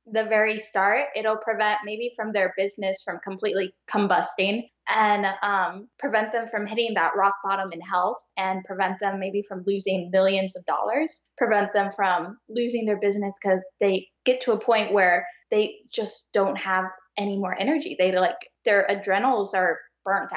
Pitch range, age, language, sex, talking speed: 190-220 Hz, 10-29, English, female, 170 wpm